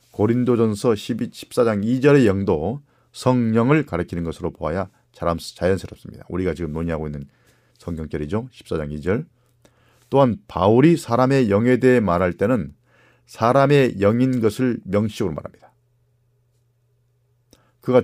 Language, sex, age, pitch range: Korean, male, 40-59, 100-125 Hz